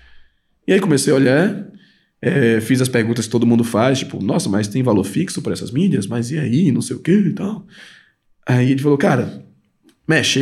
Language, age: Portuguese, 20-39